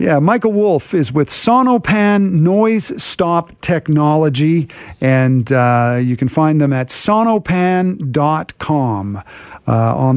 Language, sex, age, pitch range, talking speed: English, male, 50-69, 135-190 Hz, 110 wpm